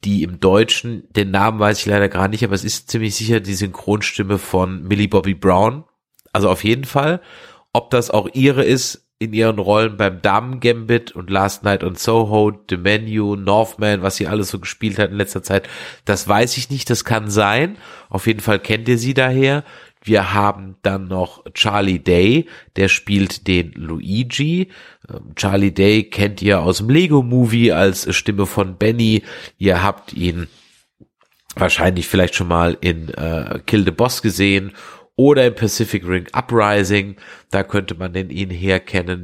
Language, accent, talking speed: German, German, 175 wpm